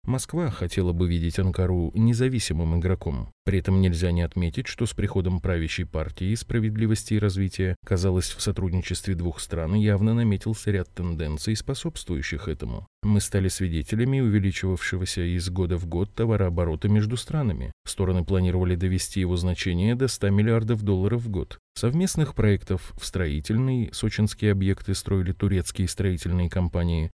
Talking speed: 140 wpm